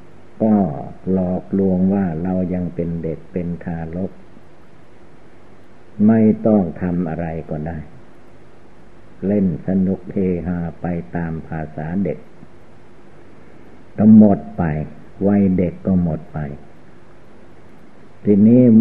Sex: male